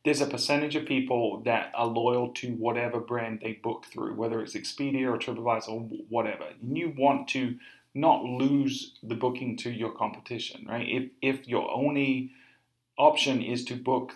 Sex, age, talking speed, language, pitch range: male, 40-59, 175 wpm, English, 115-130 Hz